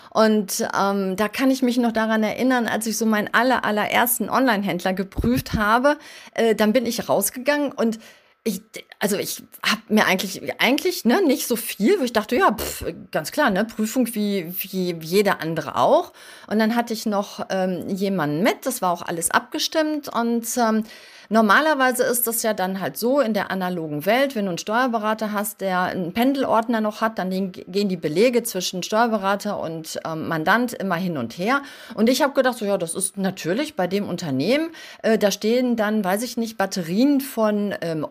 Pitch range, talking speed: 195-250 Hz, 185 wpm